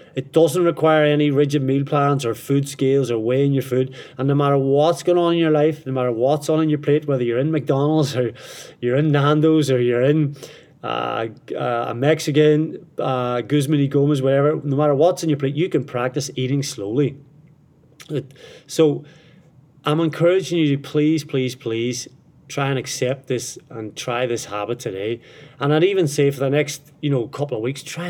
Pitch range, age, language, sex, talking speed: 125-150 Hz, 30-49, English, male, 190 wpm